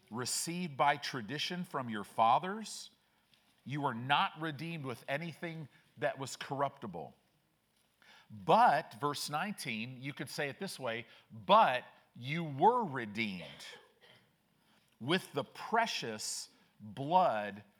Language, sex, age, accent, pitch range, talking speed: English, male, 50-69, American, 115-160 Hz, 110 wpm